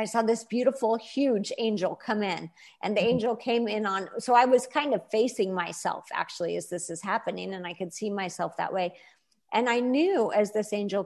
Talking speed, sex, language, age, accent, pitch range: 210 wpm, female, English, 50-69, American, 195-230 Hz